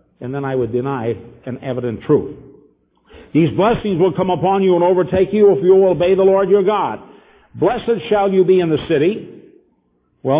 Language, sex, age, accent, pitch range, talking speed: English, male, 50-69, American, 120-190 Hz, 190 wpm